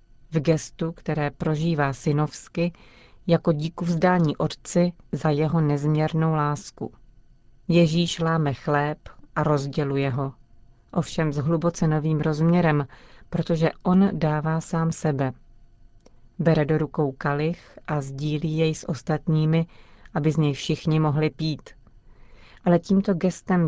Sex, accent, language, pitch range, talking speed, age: female, native, Czech, 140-165 Hz, 120 wpm, 40-59